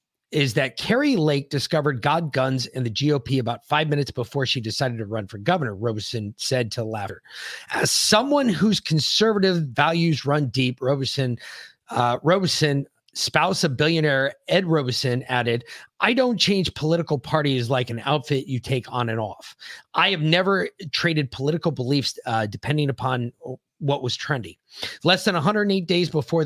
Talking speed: 160 wpm